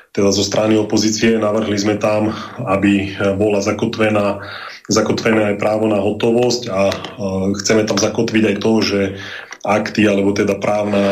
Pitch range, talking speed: 100-115 Hz, 145 wpm